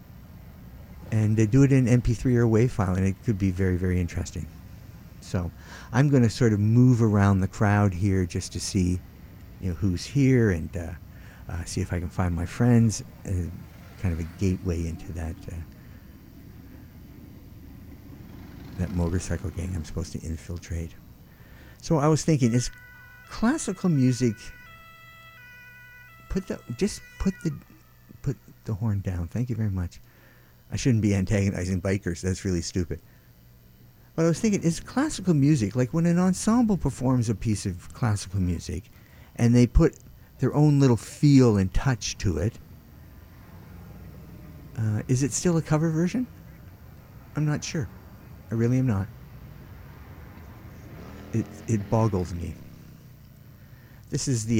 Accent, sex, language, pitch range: American, male, English, 90-125 Hz